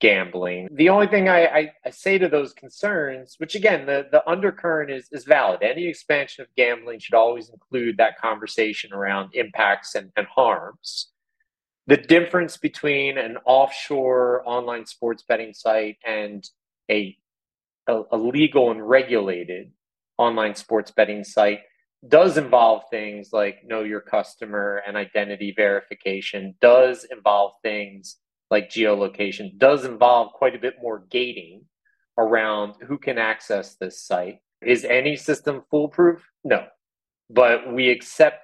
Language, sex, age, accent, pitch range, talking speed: English, male, 40-59, American, 105-145 Hz, 140 wpm